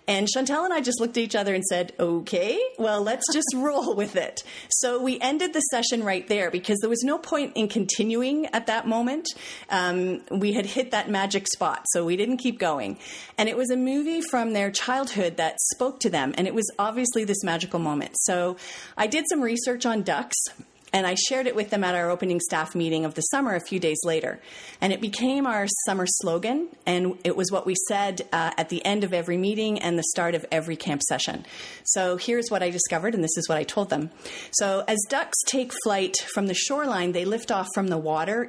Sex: female